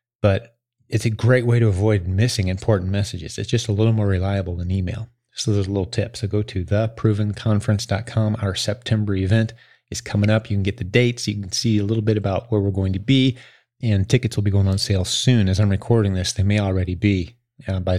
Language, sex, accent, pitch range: English, male, American, 95-115 Hz